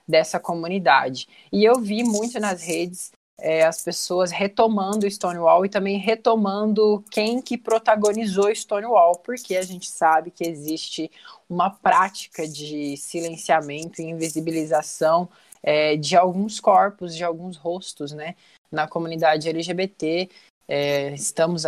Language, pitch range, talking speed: Portuguese, 160-190 Hz, 115 wpm